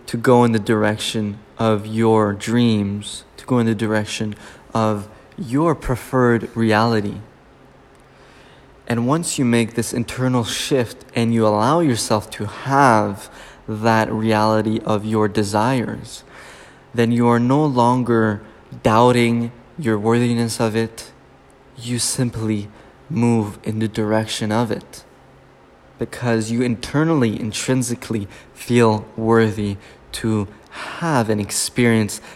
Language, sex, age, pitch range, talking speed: English, male, 20-39, 110-125 Hz, 115 wpm